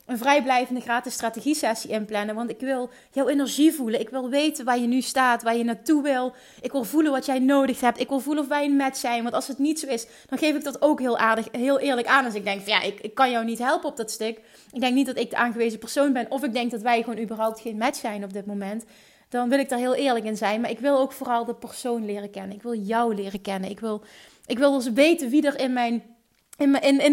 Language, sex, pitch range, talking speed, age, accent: Dutch, female, 230-275 Hz, 270 wpm, 30-49, Dutch